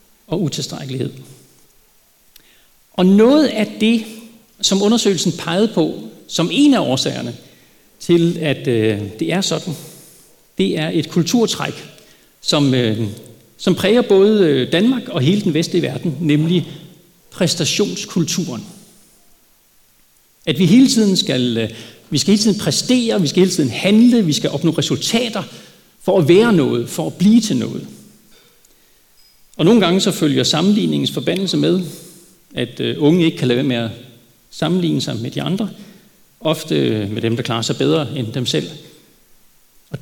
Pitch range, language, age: 155-205 Hz, Danish, 60-79